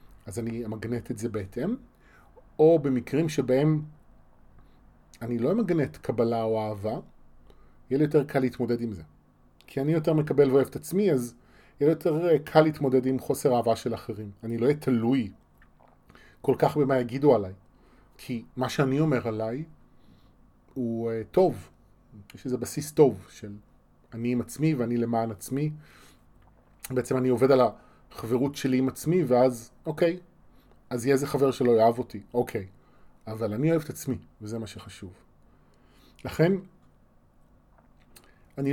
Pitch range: 110-145 Hz